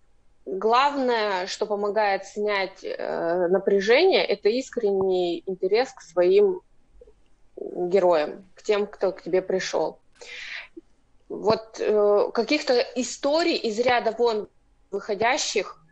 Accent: native